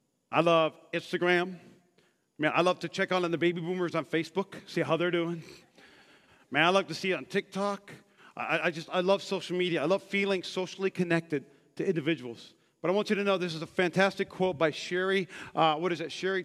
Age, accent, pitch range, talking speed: 40-59, American, 175-230 Hz, 220 wpm